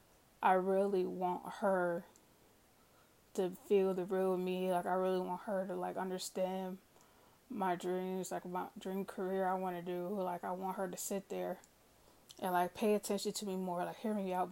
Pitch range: 180-200 Hz